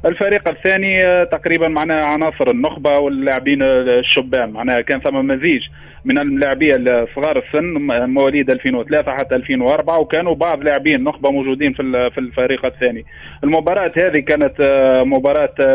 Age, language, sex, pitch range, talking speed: 30-49, Arabic, male, 135-170 Hz, 130 wpm